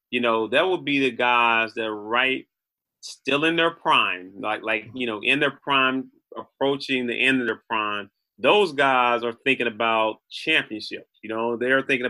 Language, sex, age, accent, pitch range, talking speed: English, male, 30-49, American, 115-135 Hz, 185 wpm